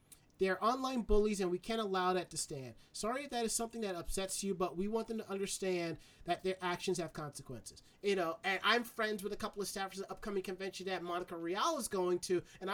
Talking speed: 235 wpm